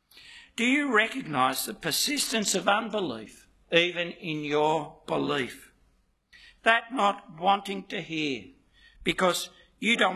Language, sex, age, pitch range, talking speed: English, male, 60-79, 150-220 Hz, 110 wpm